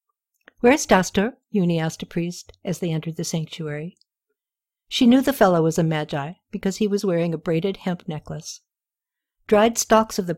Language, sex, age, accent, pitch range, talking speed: English, female, 60-79, American, 165-220 Hz, 180 wpm